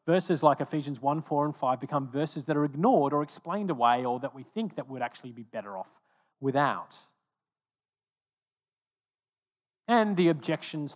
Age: 40-59